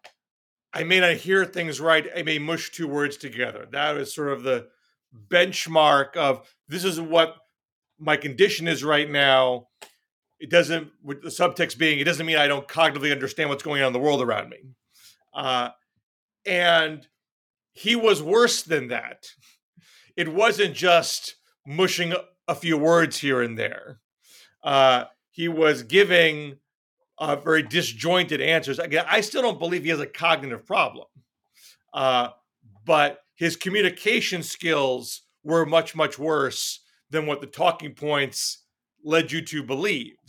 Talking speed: 150 wpm